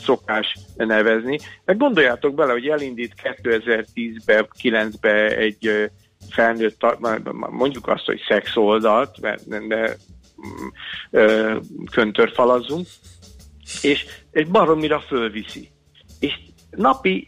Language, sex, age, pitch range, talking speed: Hungarian, male, 50-69, 110-135 Hz, 85 wpm